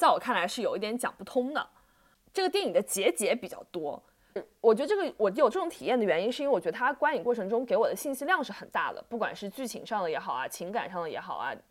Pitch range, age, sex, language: 210-320 Hz, 20-39, female, Chinese